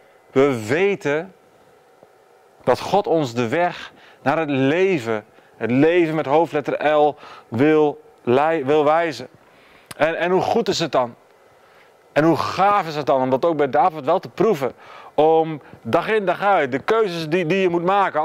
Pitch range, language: 135-180 Hz, Dutch